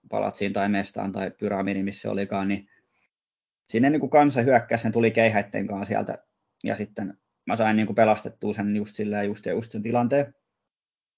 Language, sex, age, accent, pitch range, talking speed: Finnish, male, 20-39, native, 100-115 Hz, 165 wpm